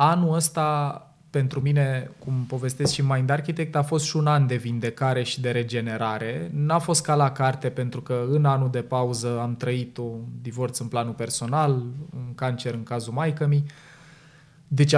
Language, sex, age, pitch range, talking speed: Romanian, male, 20-39, 120-155 Hz, 175 wpm